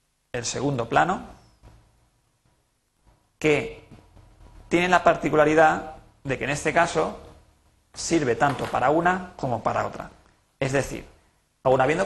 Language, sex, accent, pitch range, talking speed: Spanish, male, Spanish, 130-165 Hz, 115 wpm